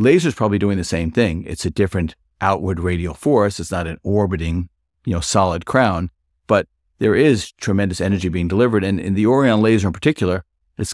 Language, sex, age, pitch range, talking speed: English, male, 50-69, 80-105 Hz, 190 wpm